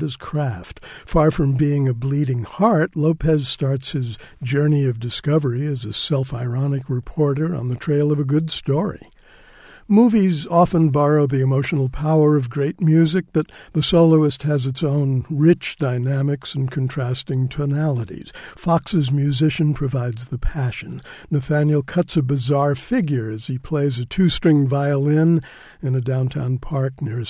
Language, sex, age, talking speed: English, male, 60-79, 145 wpm